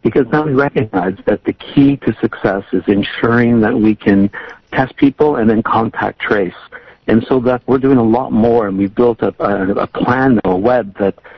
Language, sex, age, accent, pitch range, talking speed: English, male, 60-79, American, 100-120 Hz, 205 wpm